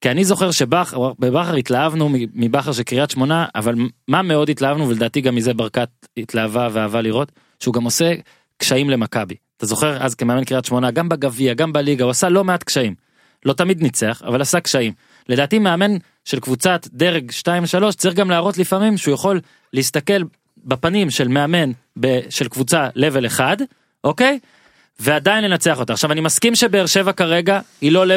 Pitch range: 125-170 Hz